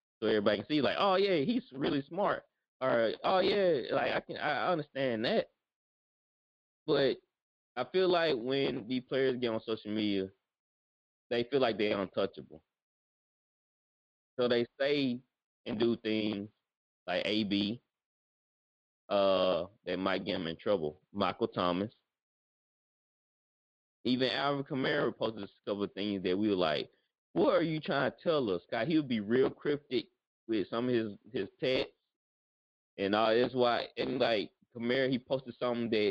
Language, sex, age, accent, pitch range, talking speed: English, male, 20-39, American, 105-155 Hz, 160 wpm